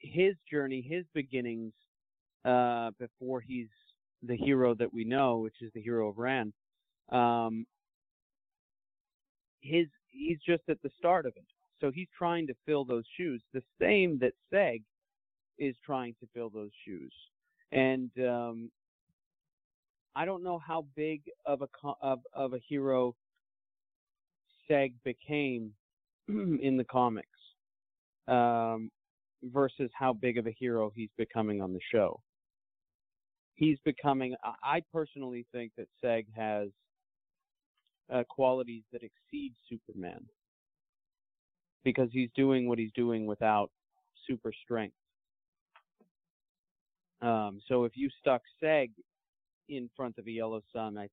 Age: 40-59